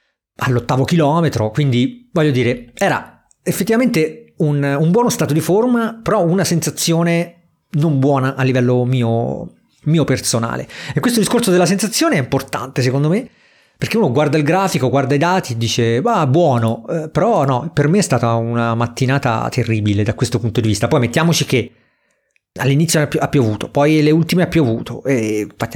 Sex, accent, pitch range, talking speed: male, native, 120-155 Hz, 170 wpm